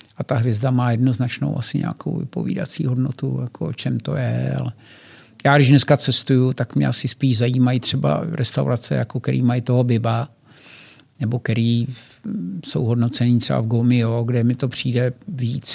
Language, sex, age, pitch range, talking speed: Czech, male, 50-69, 120-135 Hz, 165 wpm